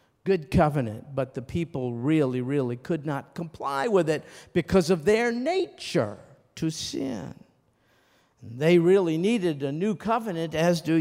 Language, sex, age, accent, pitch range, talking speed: English, male, 50-69, American, 125-195 Hz, 140 wpm